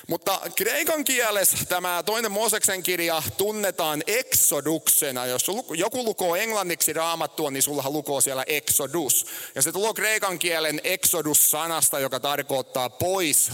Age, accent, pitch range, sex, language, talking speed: 30-49, native, 130-175 Hz, male, Finnish, 130 wpm